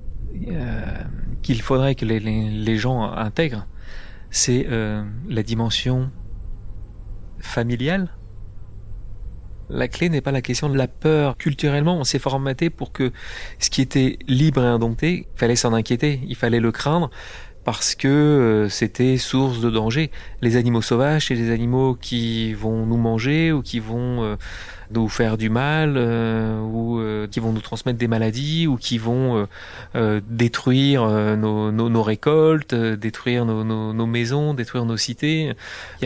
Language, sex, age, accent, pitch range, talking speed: French, male, 30-49, French, 110-140 Hz, 165 wpm